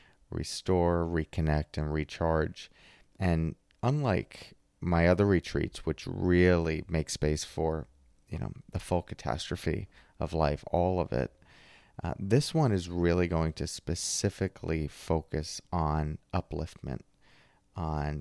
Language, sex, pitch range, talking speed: English, male, 80-95 Hz, 120 wpm